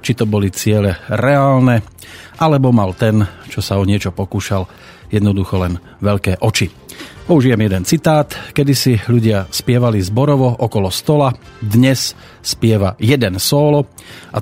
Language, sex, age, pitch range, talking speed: Slovak, male, 40-59, 100-120 Hz, 130 wpm